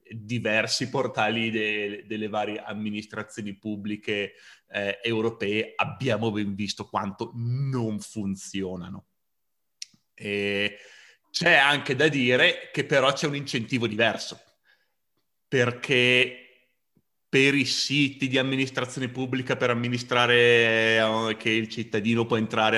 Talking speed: 105 wpm